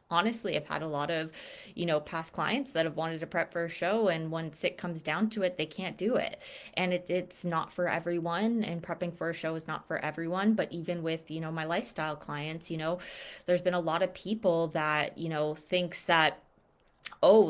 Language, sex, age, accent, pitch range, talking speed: English, female, 20-39, American, 160-180 Hz, 225 wpm